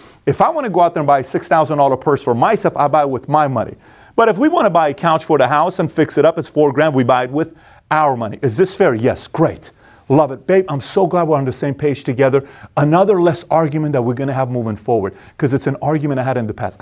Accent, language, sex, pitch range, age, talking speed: American, English, male, 125-160 Hz, 40-59, 285 wpm